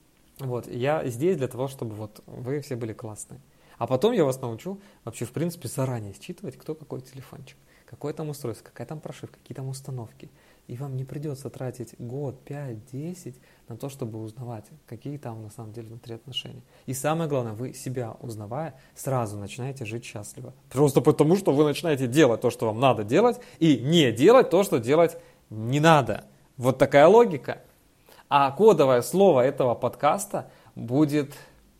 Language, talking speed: Russian, 170 wpm